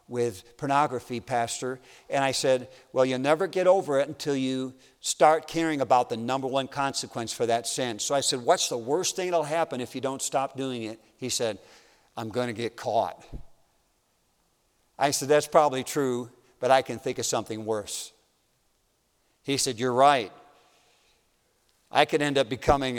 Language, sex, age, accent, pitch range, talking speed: English, male, 50-69, American, 125-155 Hz, 175 wpm